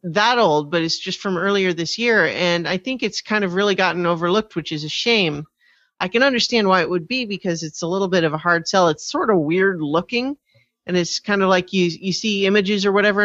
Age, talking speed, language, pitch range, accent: 40-59, 245 wpm, English, 155-200 Hz, American